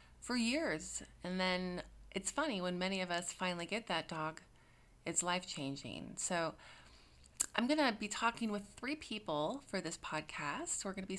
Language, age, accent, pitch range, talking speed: English, 30-49, American, 165-210 Hz, 160 wpm